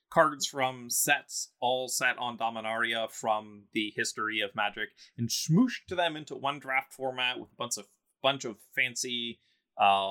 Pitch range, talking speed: 105-130 Hz, 165 wpm